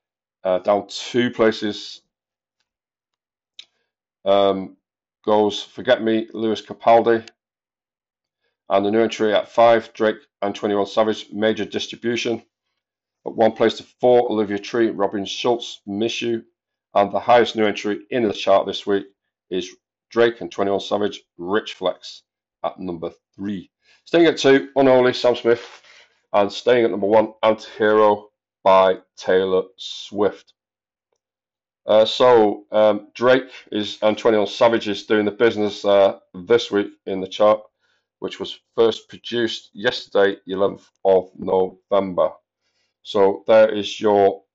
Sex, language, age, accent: male, English, 40-59, British